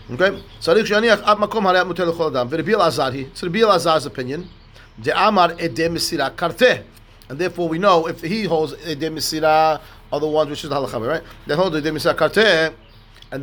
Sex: male